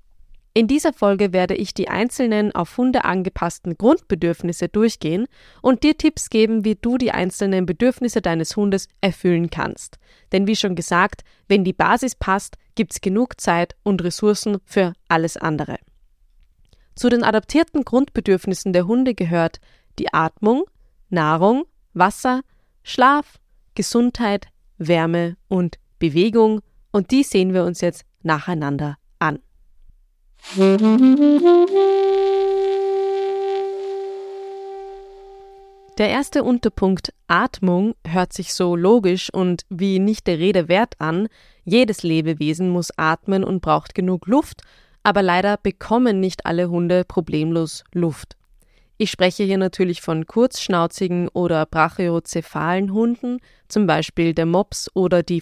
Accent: German